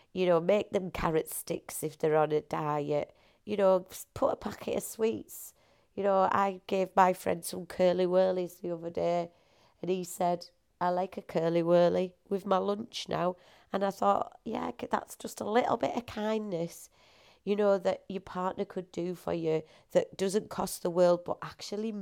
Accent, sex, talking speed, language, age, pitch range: British, female, 190 wpm, English, 30-49, 170-210 Hz